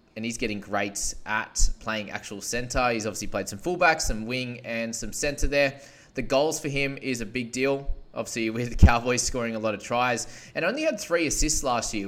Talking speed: 215 wpm